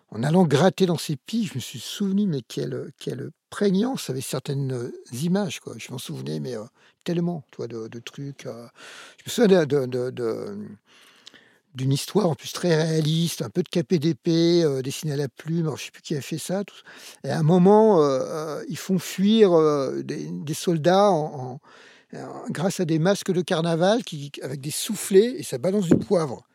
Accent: French